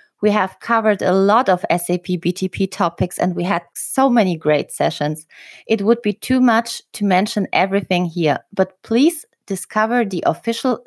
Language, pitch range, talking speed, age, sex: English, 165-225 Hz, 165 wpm, 20-39, female